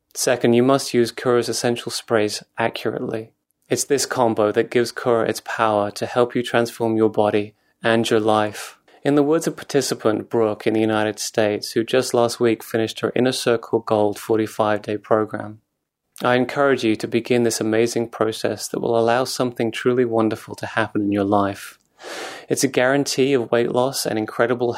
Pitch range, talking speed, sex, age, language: 110-125 Hz, 175 wpm, male, 30-49, English